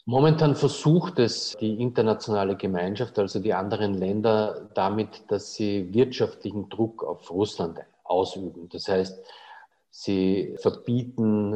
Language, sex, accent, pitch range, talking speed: German, male, Swiss, 95-110 Hz, 115 wpm